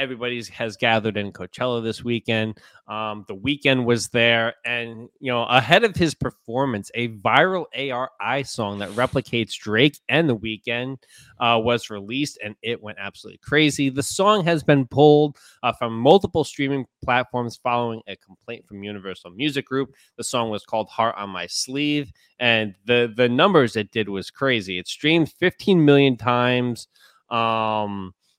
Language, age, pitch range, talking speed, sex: English, 20-39, 110-135 Hz, 160 wpm, male